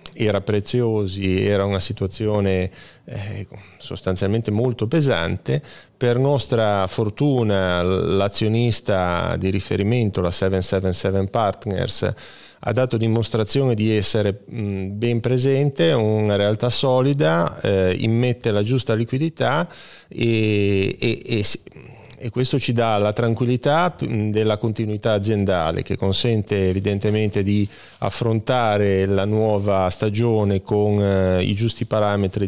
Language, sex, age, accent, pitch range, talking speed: Italian, male, 30-49, native, 100-120 Hz, 105 wpm